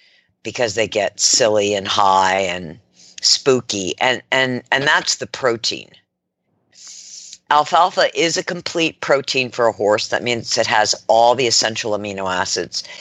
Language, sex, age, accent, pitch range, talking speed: English, female, 50-69, American, 105-130 Hz, 145 wpm